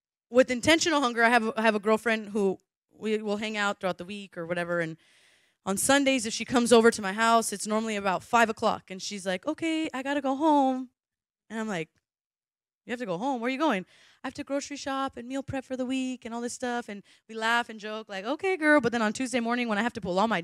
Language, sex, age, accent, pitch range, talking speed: English, female, 20-39, American, 215-270 Hz, 260 wpm